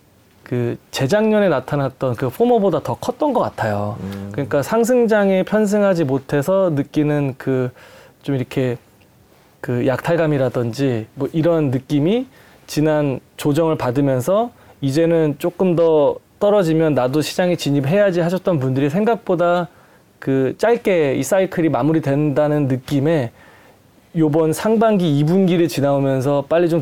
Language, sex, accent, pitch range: Korean, male, native, 135-180 Hz